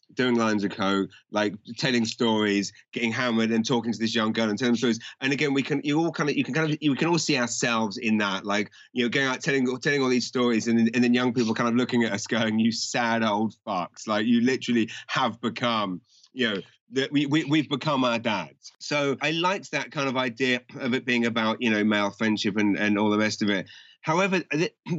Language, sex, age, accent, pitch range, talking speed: English, male, 30-49, British, 110-140 Hz, 240 wpm